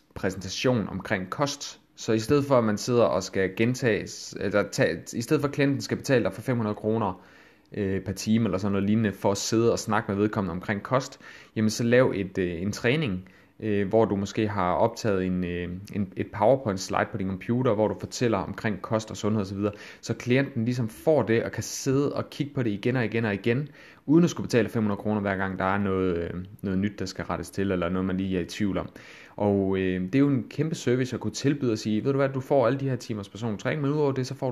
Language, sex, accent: Danish, male, native